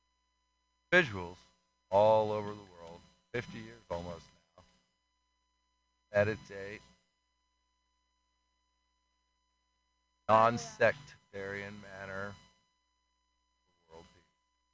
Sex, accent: male, American